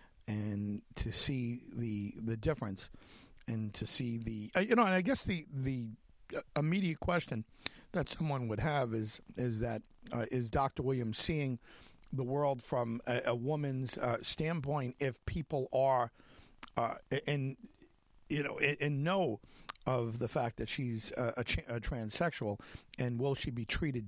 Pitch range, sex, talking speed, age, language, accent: 110-135 Hz, male, 155 wpm, 50-69, English, American